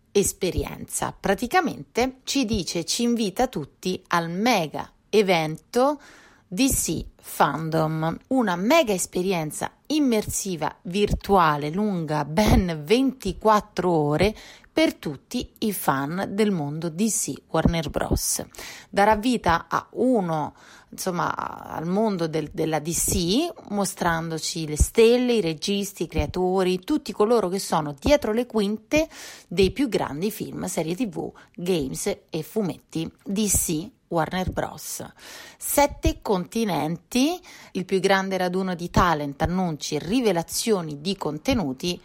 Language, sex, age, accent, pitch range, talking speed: Italian, female, 30-49, native, 170-220 Hz, 115 wpm